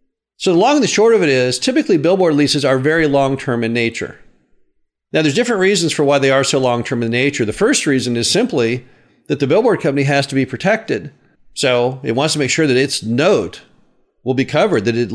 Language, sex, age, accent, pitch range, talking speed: English, male, 50-69, American, 130-165 Hz, 225 wpm